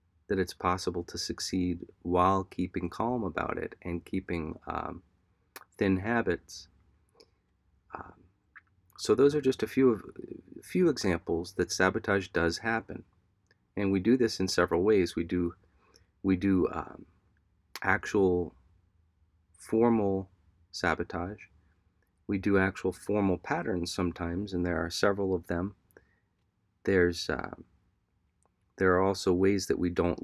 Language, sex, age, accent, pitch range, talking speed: English, male, 40-59, American, 90-95 Hz, 130 wpm